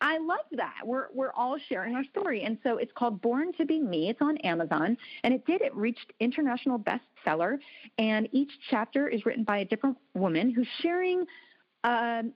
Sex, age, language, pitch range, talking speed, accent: female, 40-59, English, 180-250 Hz, 190 wpm, American